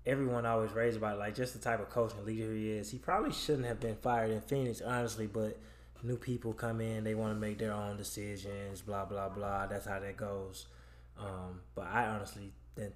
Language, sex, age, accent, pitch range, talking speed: English, male, 20-39, American, 100-120 Hz, 220 wpm